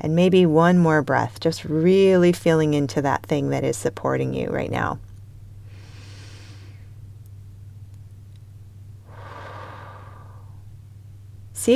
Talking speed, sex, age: 90 wpm, female, 30-49